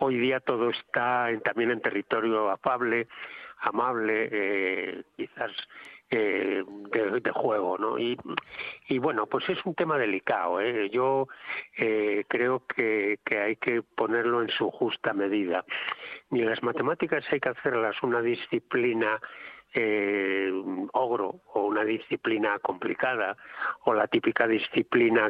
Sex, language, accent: male, Spanish, Spanish